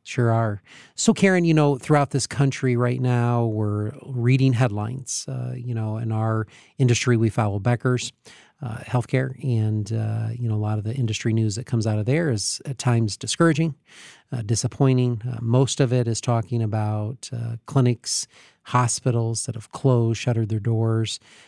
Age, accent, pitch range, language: 40-59, American, 115-135 Hz, English